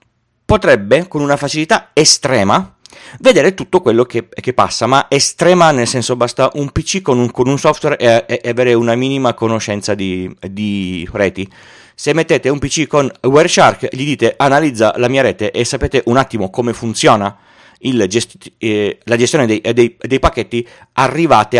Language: Italian